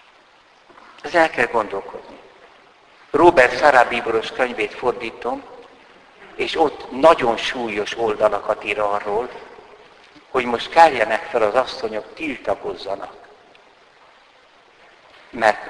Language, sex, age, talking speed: Hungarian, male, 60-79, 85 wpm